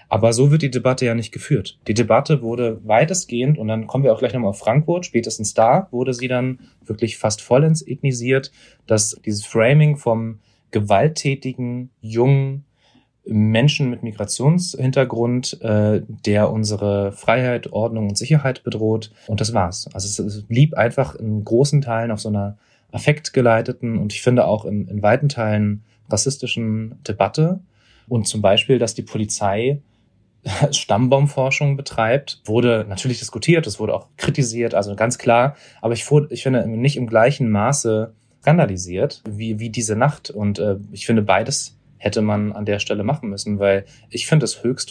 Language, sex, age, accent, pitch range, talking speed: German, male, 30-49, German, 105-130 Hz, 160 wpm